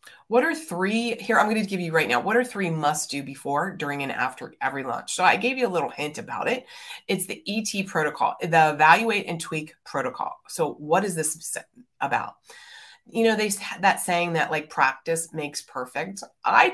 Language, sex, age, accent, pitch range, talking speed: English, female, 30-49, American, 170-235 Hz, 205 wpm